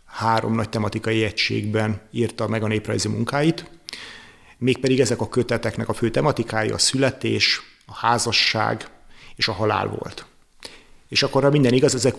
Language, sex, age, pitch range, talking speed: Hungarian, male, 30-49, 115-130 Hz, 145 wpm